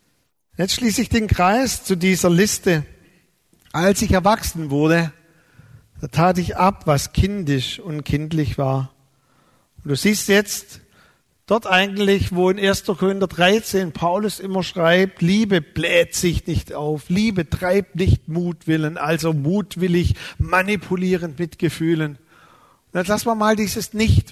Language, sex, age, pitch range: German, male, 50-69, 160-205 Hz